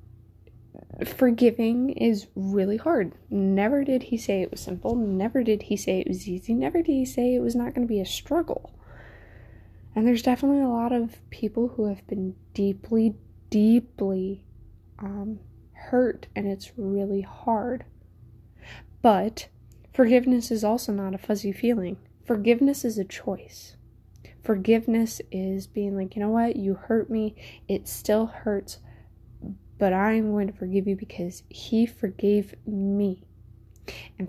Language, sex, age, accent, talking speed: English, female, 20-39, American, 145 wpm